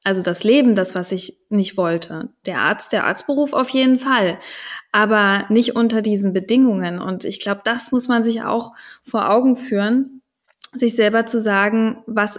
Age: 20-39